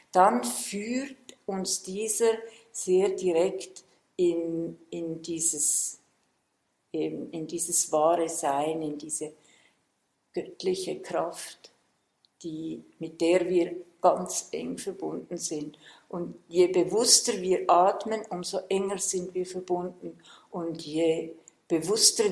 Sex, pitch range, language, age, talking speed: female, 165-195 Hz, German, 50-69, 100 wpm